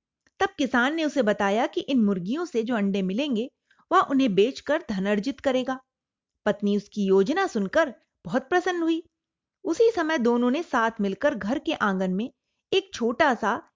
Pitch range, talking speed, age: 215-315 Hz, 165 wpm, 30-49